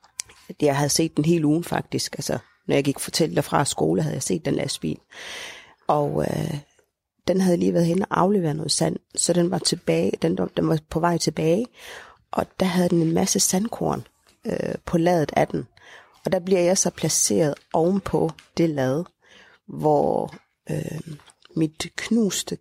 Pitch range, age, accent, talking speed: 155-180 Hz, 30-49, native, 175 wpm